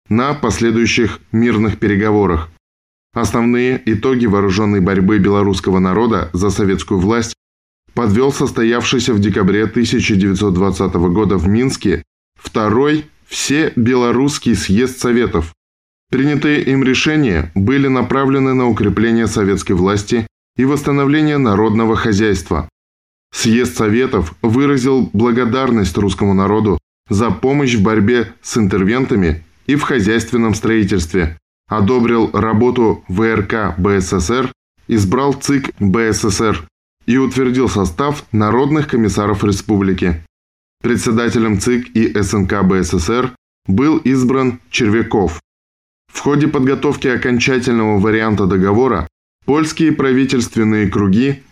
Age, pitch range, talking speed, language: 10-29, 95-125 Hz, 100 wpm, Russian